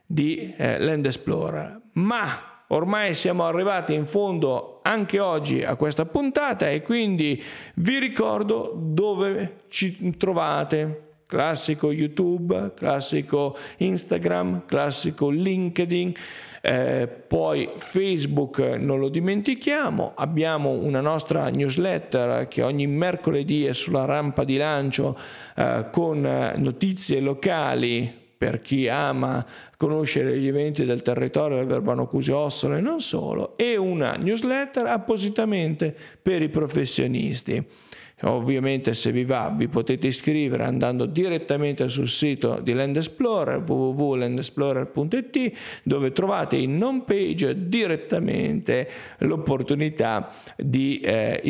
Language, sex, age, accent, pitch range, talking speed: Italian, male, 40-59, native, 135-185 Hz, 110 wpm